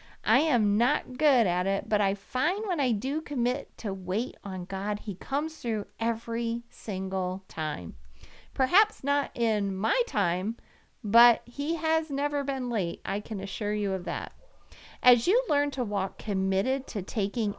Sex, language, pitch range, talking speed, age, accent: female, English, 200-280 Hz, 165 wpm, 40-59, American